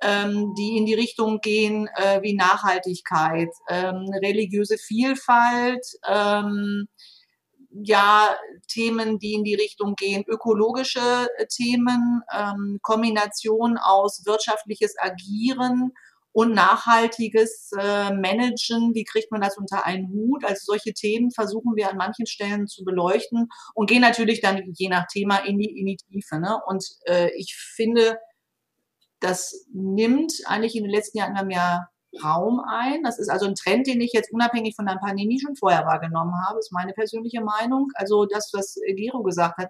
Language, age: German, 40-59